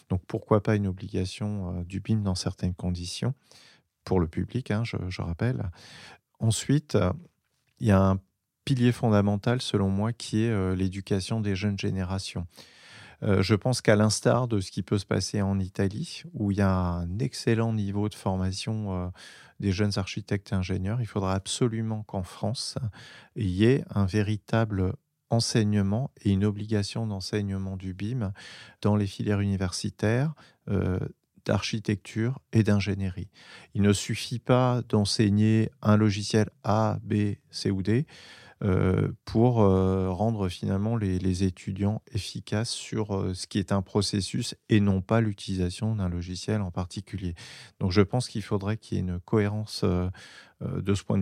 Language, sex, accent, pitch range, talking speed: French, male, French, 95-110 Hz, 155 wpm